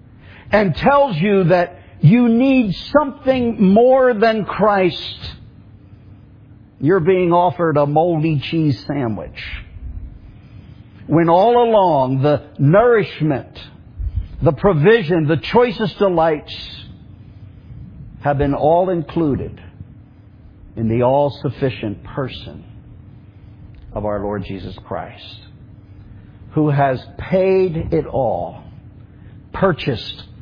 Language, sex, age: English, male, 60-79